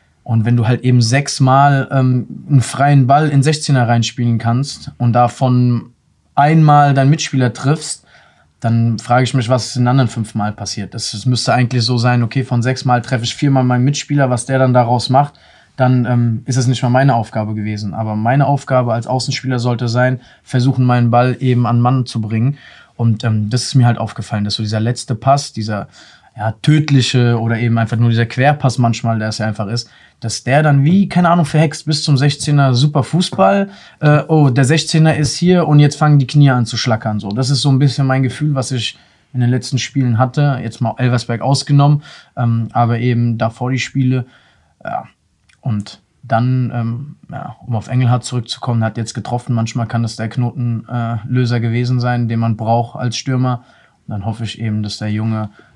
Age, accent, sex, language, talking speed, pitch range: 20-39, German, male, German, 195 wpm, 115-135 Hz